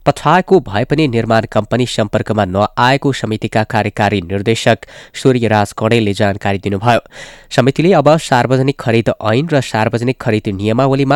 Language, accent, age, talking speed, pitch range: English, Indian, 20-39, 130 wpm, 105-135 Hz